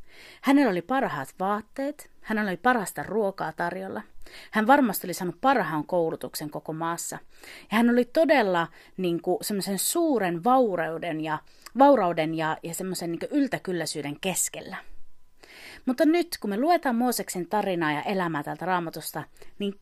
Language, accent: Finnish, native